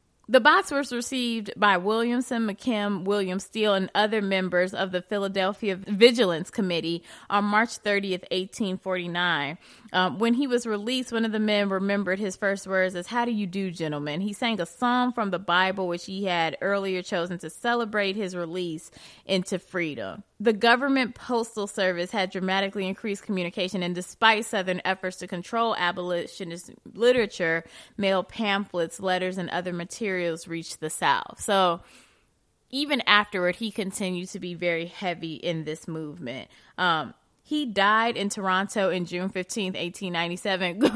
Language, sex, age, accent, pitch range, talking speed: English, female, 20-39, American, 175-220 Hz, 150 wpm